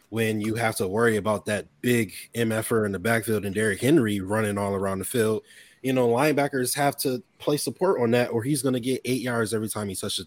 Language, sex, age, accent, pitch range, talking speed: English, male, 20-39, American, 95-115 Hz, 235 wpm